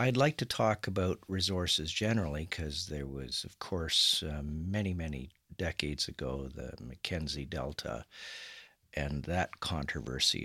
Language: English